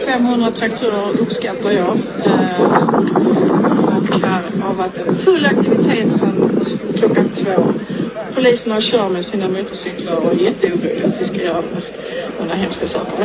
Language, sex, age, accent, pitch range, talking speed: English, female, 50-69, Swedish, 190-235 Hz, 80 wpm